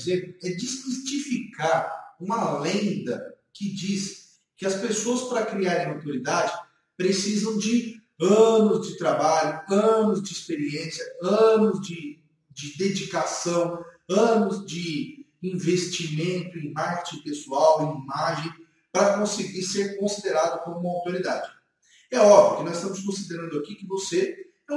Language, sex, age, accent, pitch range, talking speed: Portuguese, male, 30-49, Brazilian, 175-220 Hz, 120 wpm